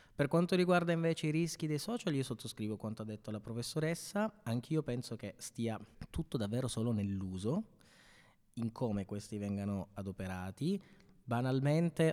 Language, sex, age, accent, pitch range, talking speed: Italian, male, 20-39, native, 110-140 Hz, 145 wpm